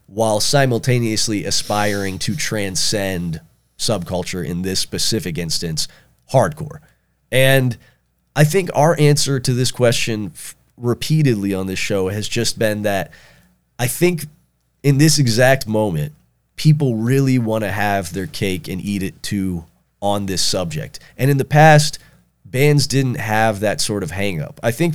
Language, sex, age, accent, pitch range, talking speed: English, male, 30-49, American, 95-130 Hz, 145 wpm